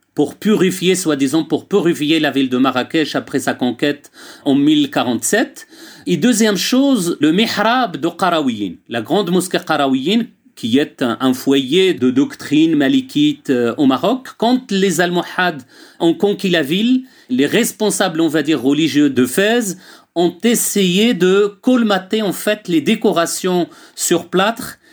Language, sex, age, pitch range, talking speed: French, male, 40-59, 165-240 Hz, 140 wpm